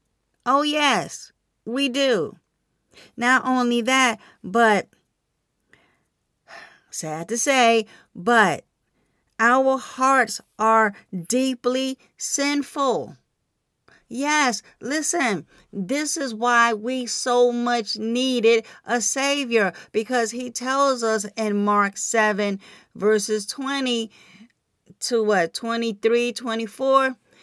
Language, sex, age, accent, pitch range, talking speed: English, female, 40-59, American, 215-255 Hz, 90 wpm